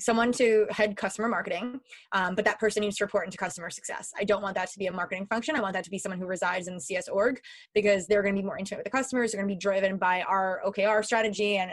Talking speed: 285 wpm